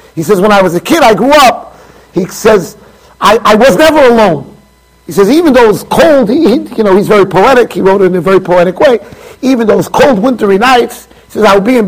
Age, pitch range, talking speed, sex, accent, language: 40-59, 210-295 Hz, 265 wpm, male, American, English